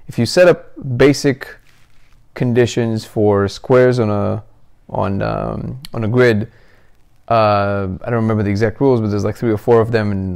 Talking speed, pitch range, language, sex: 180 wpm, 110-125 Hz, English, male